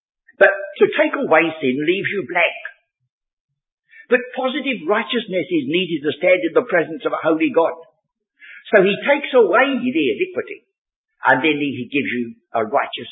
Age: 60-79